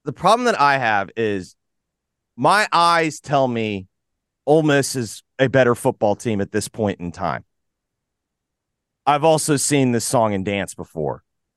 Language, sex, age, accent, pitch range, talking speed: English, male, 30-49, American, 120-175 Hz, 155 wpm